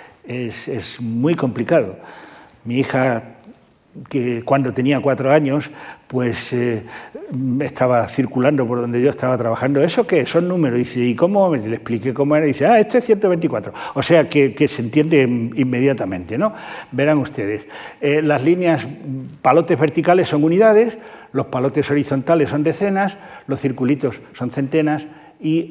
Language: Spanish